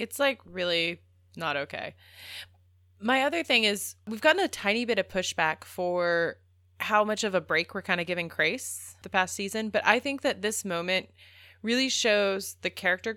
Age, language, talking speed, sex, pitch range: 20-39, English, 180 wpm, female, 165-220 Hz